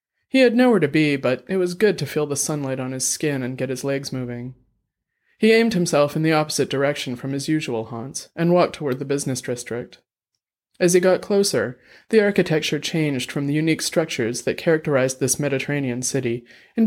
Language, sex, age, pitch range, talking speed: English, male, 30-49, 130-165 Hz, 195 wpm